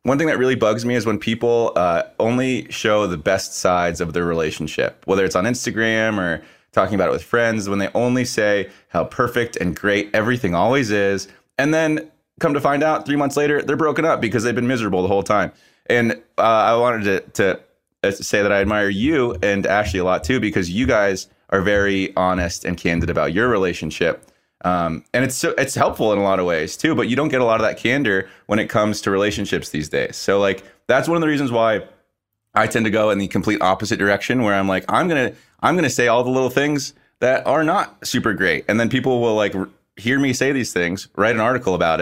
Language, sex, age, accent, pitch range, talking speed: English, male, 20-39, American, 95-120 Hz, 230 wpm